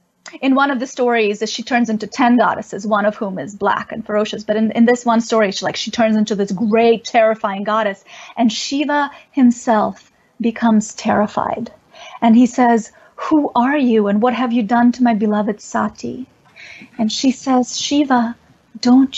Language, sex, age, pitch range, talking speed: English, female, 30-49, 215-250 Hz, 180 wpm